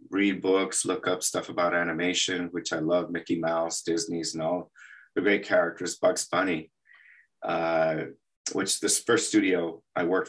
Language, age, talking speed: English, 30-49, 155 wpm